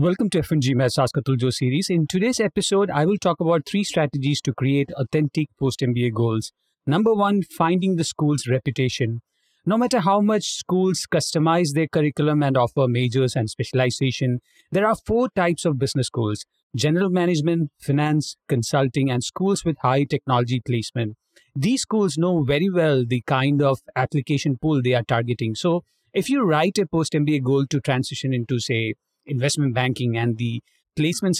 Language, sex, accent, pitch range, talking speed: English, male, Indian, 130-165 Hz, 160 wpm